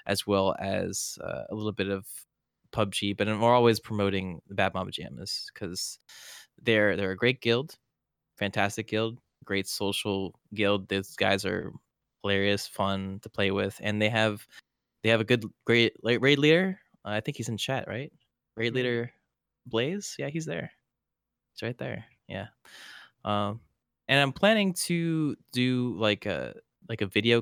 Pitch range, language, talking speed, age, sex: 100-120 Hz, English, 165 wpm, 10-29, male